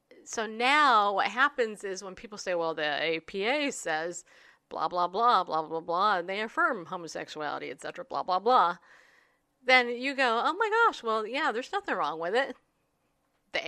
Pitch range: 195-255 Hz